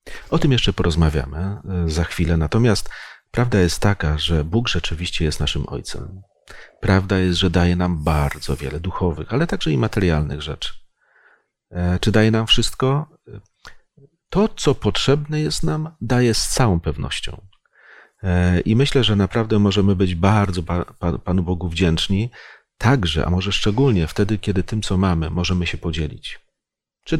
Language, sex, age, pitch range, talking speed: Polish, male, 40-59, 85-105 Hz, 145 wpm